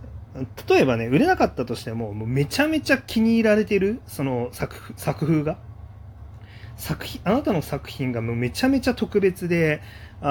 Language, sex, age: Japanese, male, 30-49